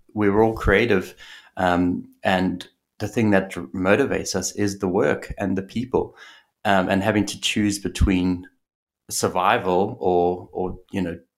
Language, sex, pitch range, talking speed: English, male, 90-105 Hz, 140 wpm